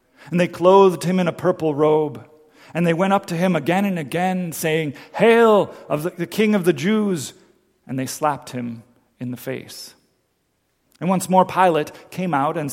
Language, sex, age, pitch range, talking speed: English, male, 40-59, 140-180 Hz, 190 wpm